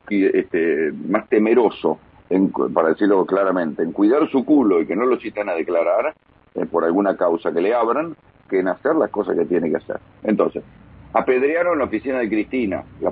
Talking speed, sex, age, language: 180 wpm, male, 50-69, Spanish